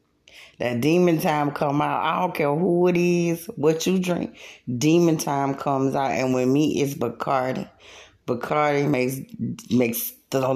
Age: 20-39